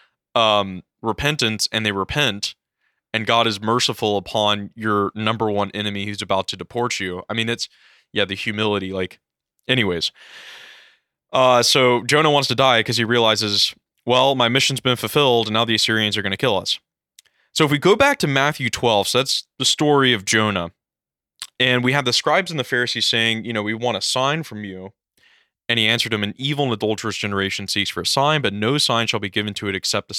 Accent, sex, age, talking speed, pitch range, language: American, male, 20-39, 205 wpm, 100-125 Hz, English